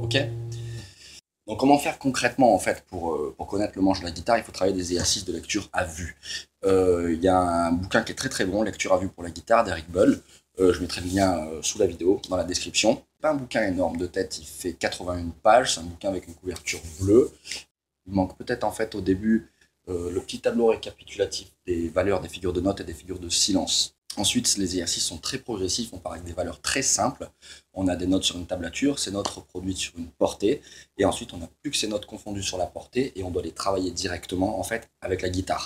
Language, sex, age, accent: French, male, 30-49, French